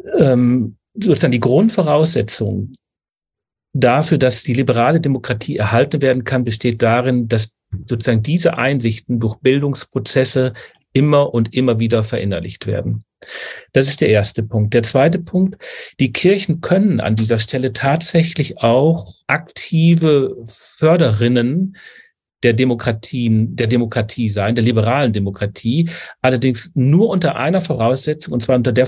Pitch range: 115-145 Hz